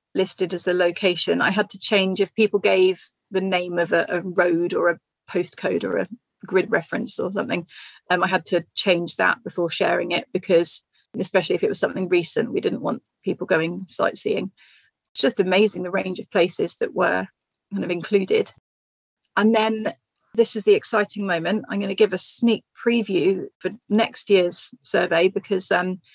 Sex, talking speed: female, 185 wpm